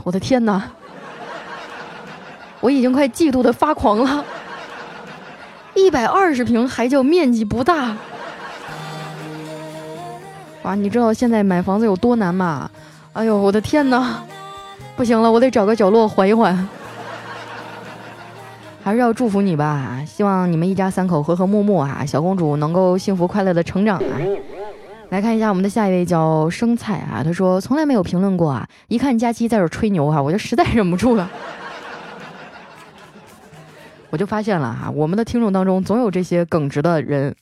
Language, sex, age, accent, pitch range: Chinese, female, 20-39, native, 175-235 Hz